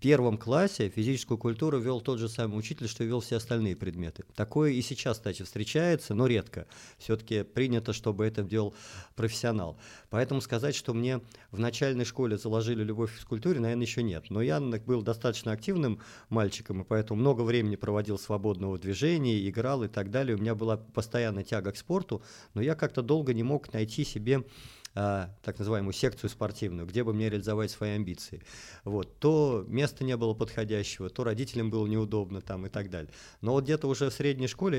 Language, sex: Russian, male